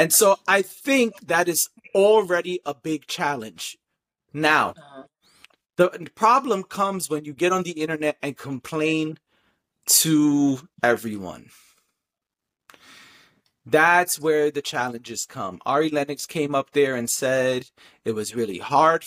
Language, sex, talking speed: English, male, 125 wpm